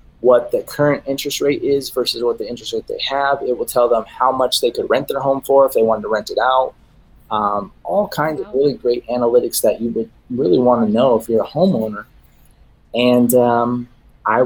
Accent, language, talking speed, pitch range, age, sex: American, English, 220 wpm, 115-140 Hz, 20-39, male